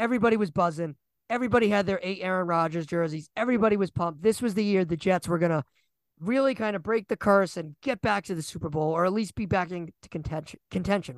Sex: male